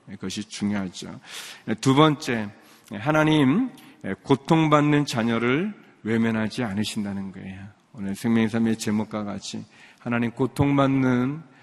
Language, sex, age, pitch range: Korean, male, 40-59, 105-130 Hz